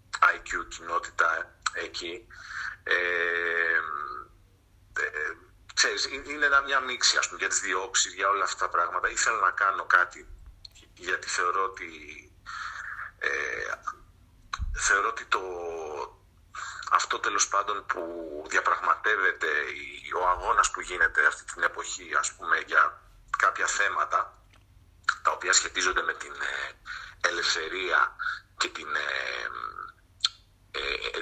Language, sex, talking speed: Greek, male, 90 wpm